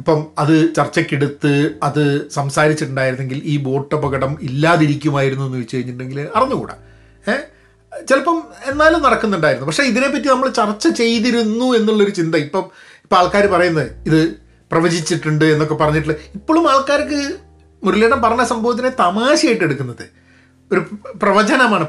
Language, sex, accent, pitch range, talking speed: Malayalam, male, native, 150-225 Hz, 110 wpm